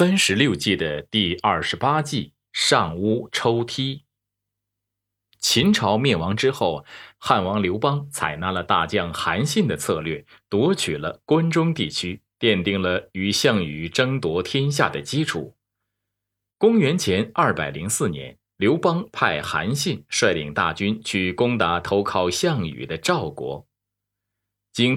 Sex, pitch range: male, 95-115 Hz